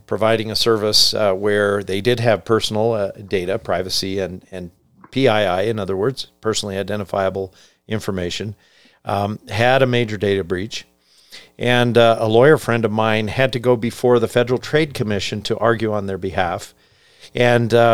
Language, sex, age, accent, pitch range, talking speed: English, male, 50-69, American, 100-125 Hz, 160 wpm